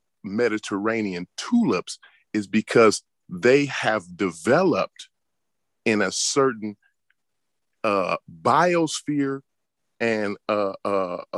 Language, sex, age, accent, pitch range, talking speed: English, male, 40-59, American, 105-160 Hz, 75 wpm